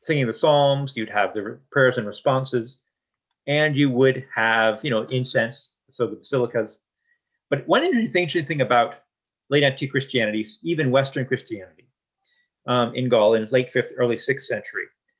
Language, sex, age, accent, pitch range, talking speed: English, male, 40-59, American, 125-165 Hz, 155 wpm